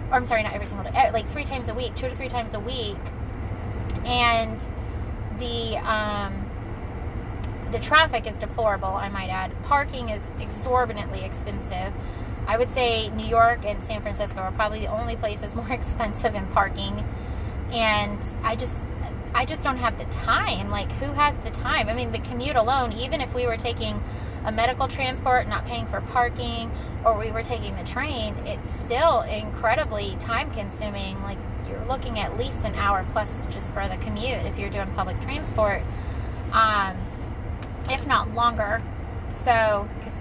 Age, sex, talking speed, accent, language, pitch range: 20-39, female, 170 wpm, American, English, 95-110 Hz